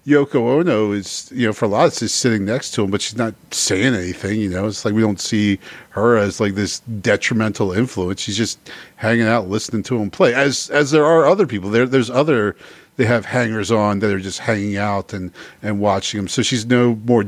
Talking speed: 235 wpm